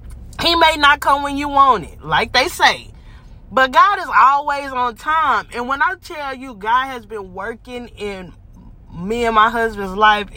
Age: 20-39